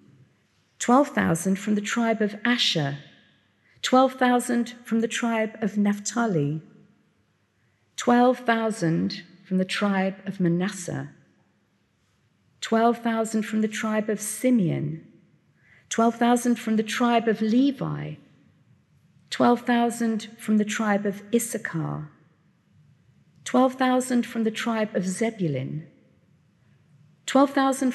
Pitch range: 180-245 Hz